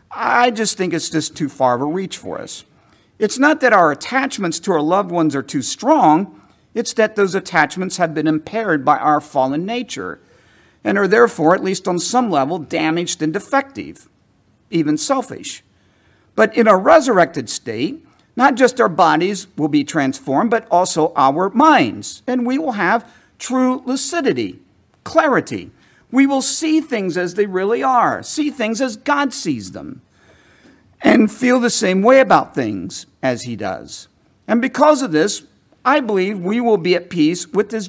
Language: English